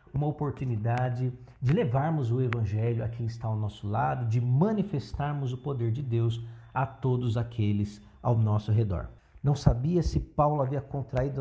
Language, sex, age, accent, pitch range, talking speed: Portuguese, male, 50-69, Brazilian, 115-160 Hz, 160 wpm